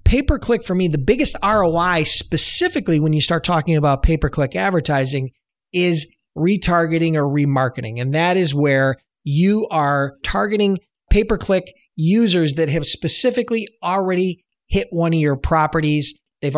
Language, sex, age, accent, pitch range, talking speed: English, male, 40-59, American, 140-175 Hz, 135 wpm